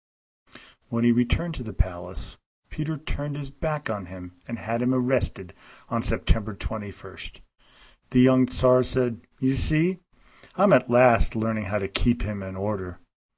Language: English